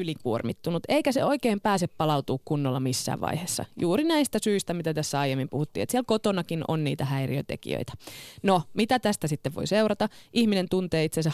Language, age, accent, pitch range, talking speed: Finnish, 20-39, native, 140-195 Hz, 165 wpm